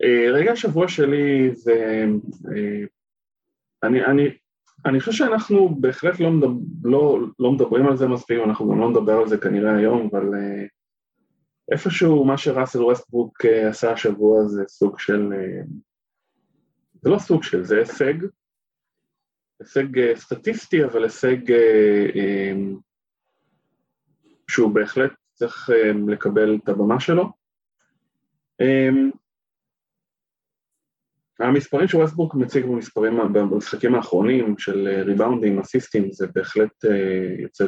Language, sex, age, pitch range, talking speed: Hebrew, male, 20-39, 105-140 Hz, 110 wpm